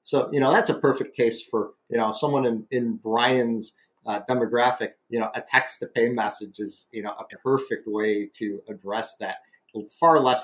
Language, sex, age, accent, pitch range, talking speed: English, male, 30-49, American, 110-130 Hz, 195 wpm